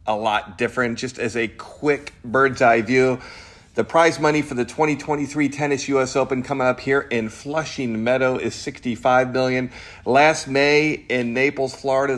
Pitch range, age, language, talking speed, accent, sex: 120-145 Hz, 40-59, English, 165 wpm, American, male